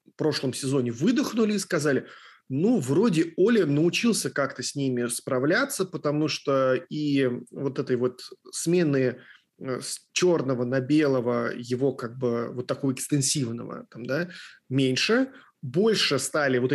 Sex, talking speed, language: male, 135 wpm, Russian